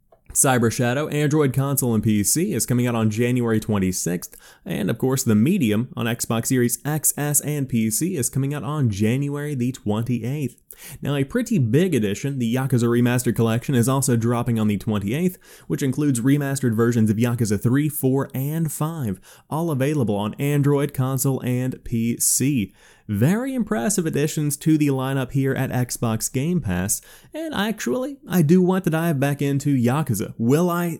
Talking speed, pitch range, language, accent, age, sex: 165 wpm, 115-145 Hz, English, American, 20-39, male